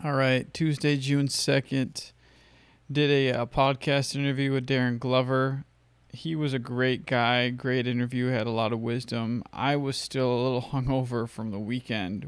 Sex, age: male, 20-39